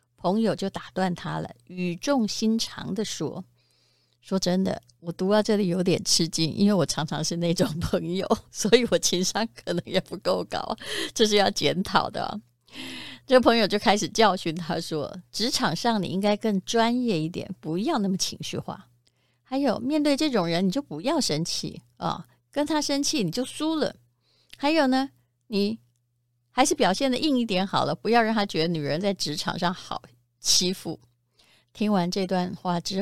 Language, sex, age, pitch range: Chinese, female, 30-49, 160-210 Hz